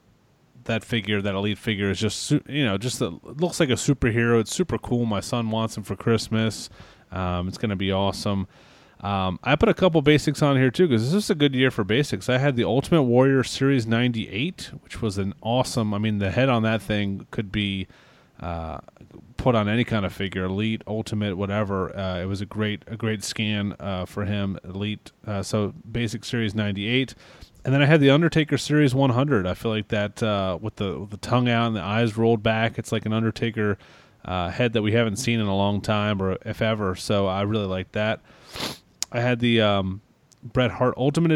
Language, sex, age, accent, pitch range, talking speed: English, male, 30-49, American, 100-125 Hz, 210 wpm